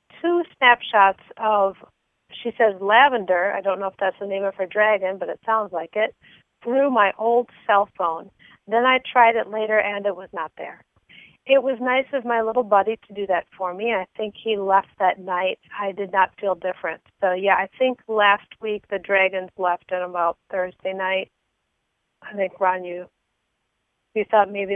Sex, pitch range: female, 190-220 Hz